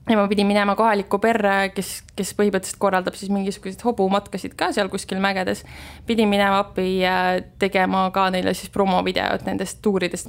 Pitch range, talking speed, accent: 180-200 Hz, 170 wpm, Finnish